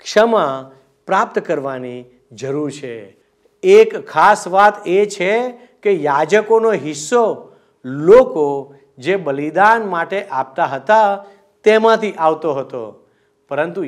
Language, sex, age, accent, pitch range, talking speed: Gujarati, male, 50-69, native, 155-230 Hz, 70 wpm